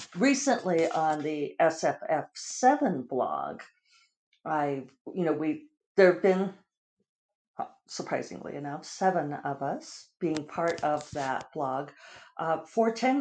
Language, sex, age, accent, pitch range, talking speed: English, female, 50-69, American, 145-185 Hz, 115 wpm